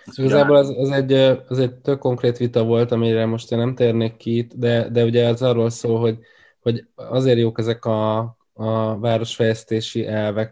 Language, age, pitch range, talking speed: Hungarian, 20-39, 105-115 Hz, 175 wpm